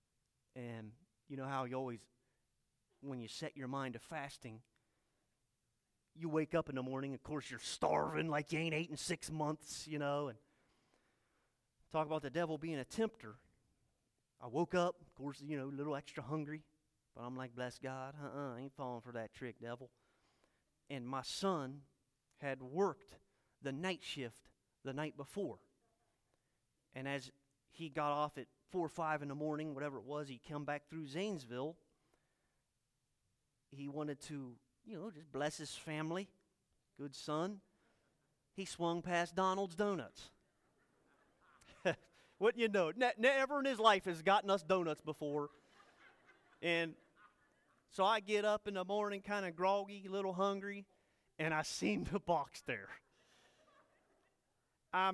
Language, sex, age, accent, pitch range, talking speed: English, male, 30-49, American, 135-175 Hz, 160 wpm